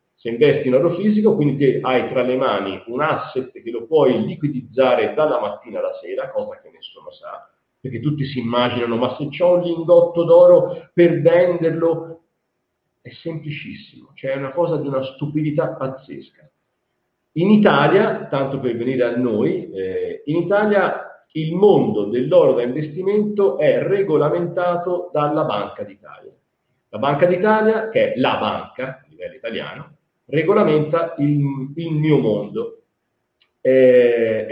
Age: 50-69